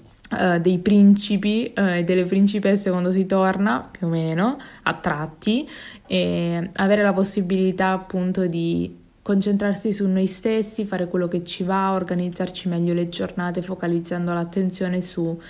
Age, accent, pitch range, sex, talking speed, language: 20-39, native, 175-205 Hz, female, 135 wpm, Italian